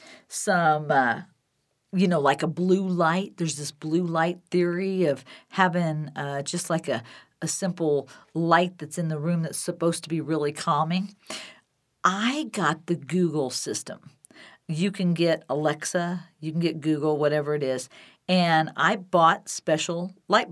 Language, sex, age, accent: English, female, 50-69, American